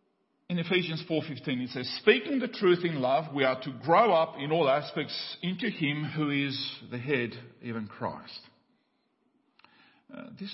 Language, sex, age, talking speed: English, male, 50-69, 160 wpm